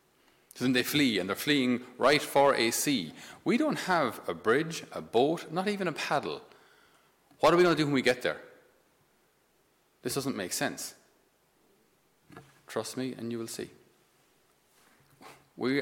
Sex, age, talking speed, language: male, 30-49, 160 wpm, English